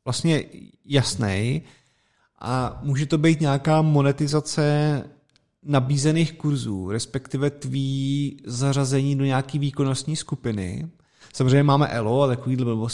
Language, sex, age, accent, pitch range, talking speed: Czech, male, 30-49, native, 125-140 Hz, 105 wpm